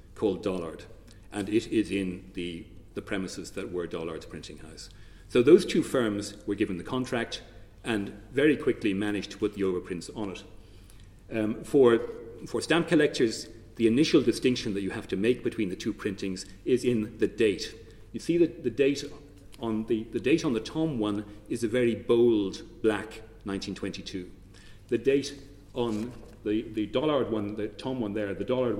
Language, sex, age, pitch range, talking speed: English, male, 40-59, 95-120 Hz, 175 wpm